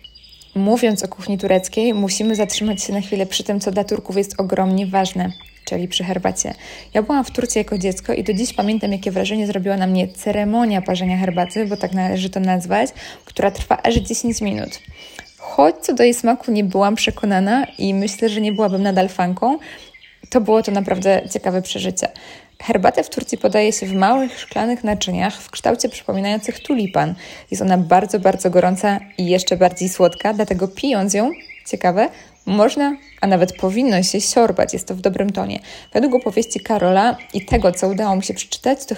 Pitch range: 190-225 Hz